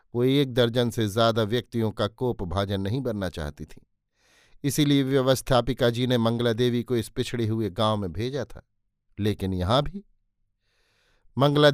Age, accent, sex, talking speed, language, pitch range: 50-69, native, male, 155 wpm, Hindi, 110-130 Hz